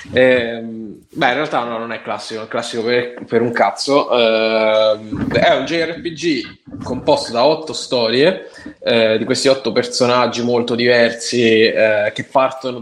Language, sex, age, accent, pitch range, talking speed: Italian, male, 10-29, native, 110-125 Hz, 150 wpm